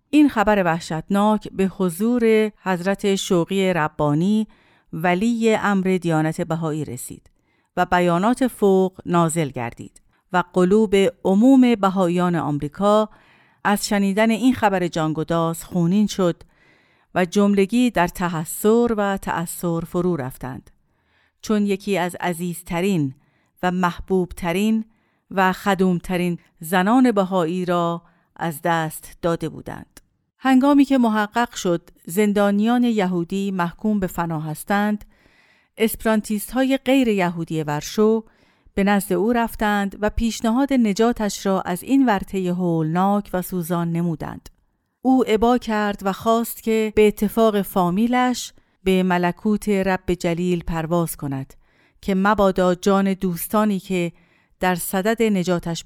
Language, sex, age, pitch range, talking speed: Persian, female, 50-69, 175-215 Hz, 115 wpm